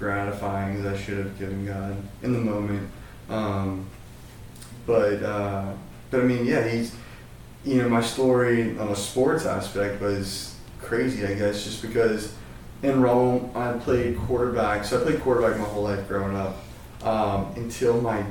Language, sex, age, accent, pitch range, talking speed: English, male, 20-39, American, 100-115 Hz, 160 wpm